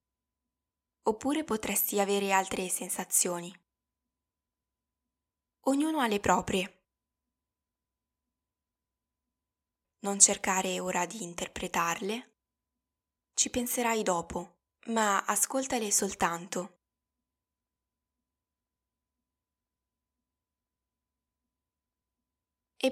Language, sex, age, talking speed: Italian, female, 10-29, 55 wpm